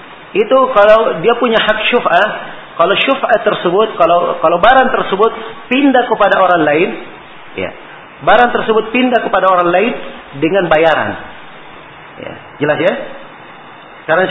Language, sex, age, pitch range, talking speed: Malay, male, 40-59, 170-225 Hz, 125 wpm